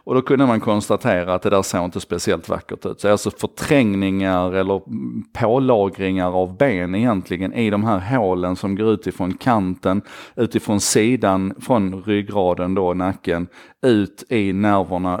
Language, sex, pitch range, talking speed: Swedish, male, 95-115 Hz, 160 wpm